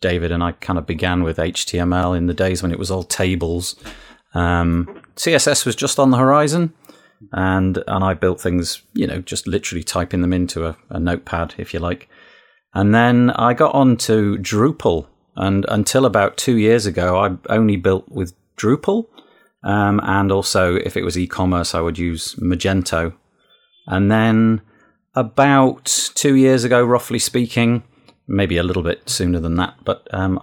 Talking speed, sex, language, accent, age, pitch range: 170 wpm, male, English, British, 30-49, 90-110 Hz